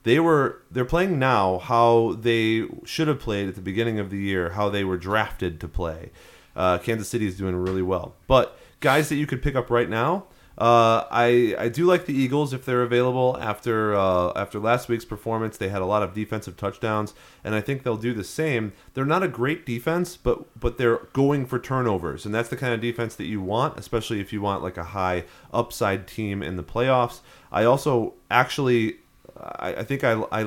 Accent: American